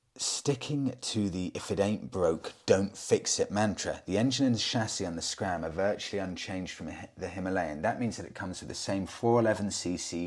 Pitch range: 85-110 Hz